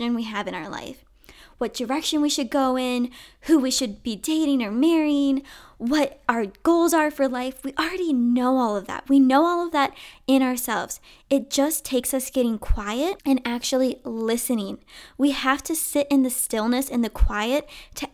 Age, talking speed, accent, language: 10-29, 190 wpm, American, English